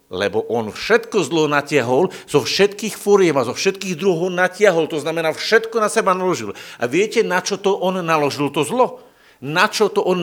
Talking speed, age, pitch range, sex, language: 190 wpm, 50-69, 145-190 Hz, male, Slovak